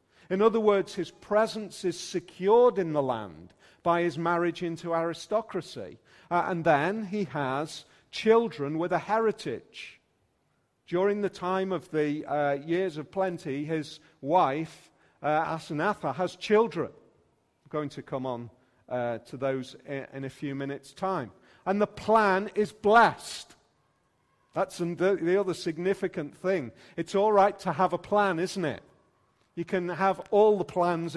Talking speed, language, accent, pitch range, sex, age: 150 wpm, English, British, 155-195 Hz, male, 40-59